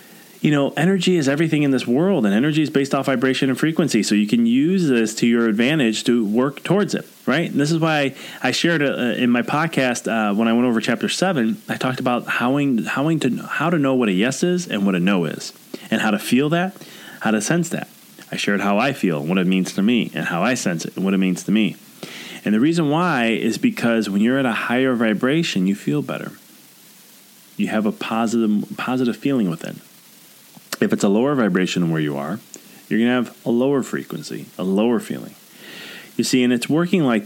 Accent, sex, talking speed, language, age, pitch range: American, male, 225 wpm, English, 30-49, 110-145 Hz